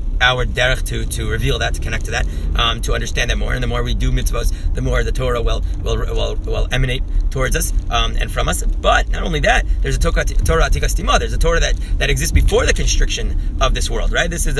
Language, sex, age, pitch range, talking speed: English, male, 30-49, 75-125 Hz, 245 wpm